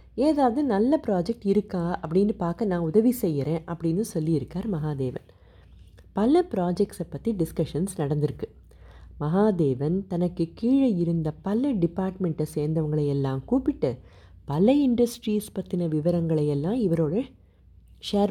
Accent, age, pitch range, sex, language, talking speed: native, 30-49, 150-205 Hz, female, Tamil, 100 wpm